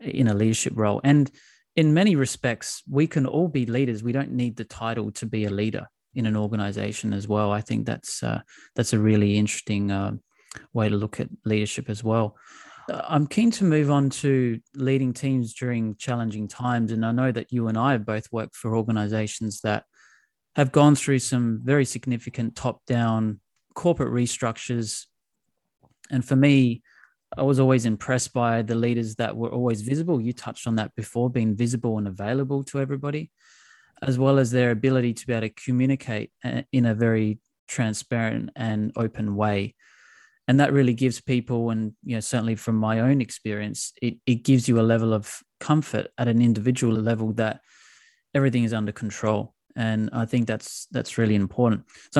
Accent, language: Australian, English